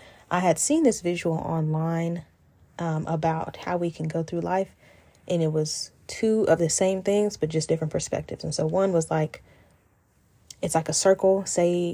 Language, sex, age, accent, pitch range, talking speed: English, female, 10-29, American, 155-180 Hz, 180 wpm